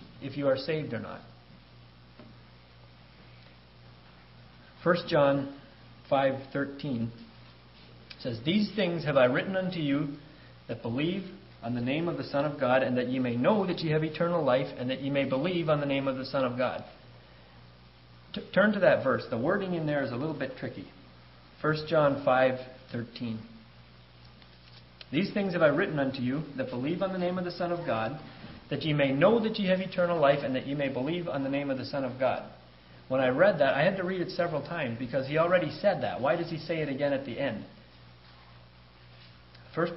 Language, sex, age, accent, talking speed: English, male, 40-59, American, 195 wpm